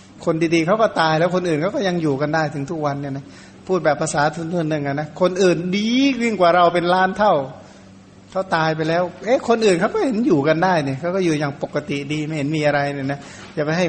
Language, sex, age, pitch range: Thai, male, 60-79, 150-185 Hz